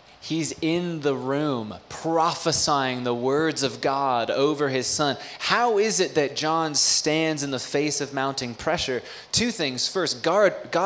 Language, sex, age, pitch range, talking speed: English, male, 20-39, 130-160 Hz, 155 wpm